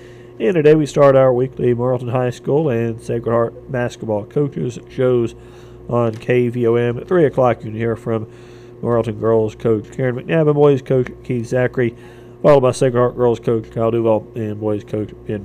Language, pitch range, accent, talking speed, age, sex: English, 120-135 Hz, American, 180 wpm, 40-59, male